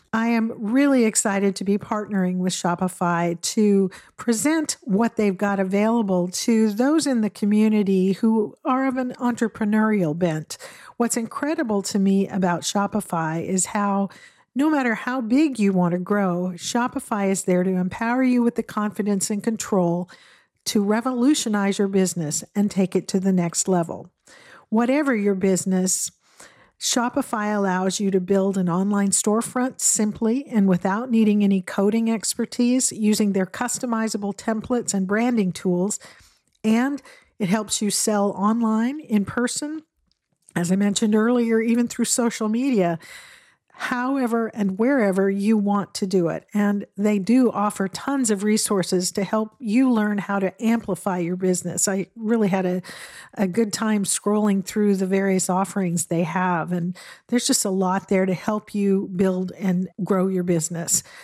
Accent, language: American, English